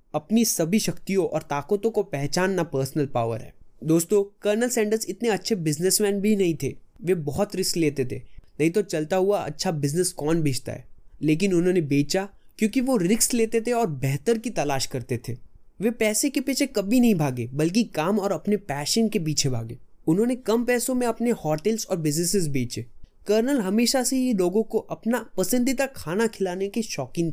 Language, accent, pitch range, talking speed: Hindi, native, 145-205 Hz, 180 wpm